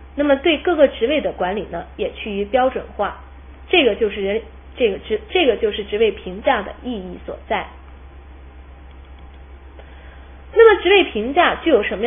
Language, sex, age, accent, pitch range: Chinese, female, 20-39, native, 210-340 Hz